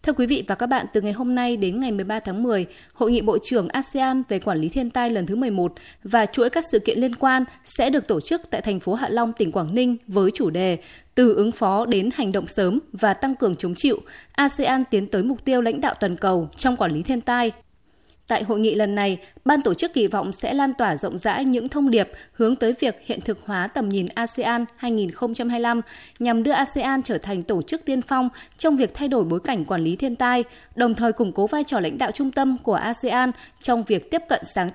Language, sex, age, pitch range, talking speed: Vietnamese, female, 20-39, 200-255 Hz, 240 wpm